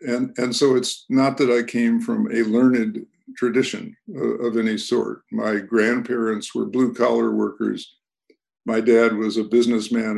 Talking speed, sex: 155 wpm, male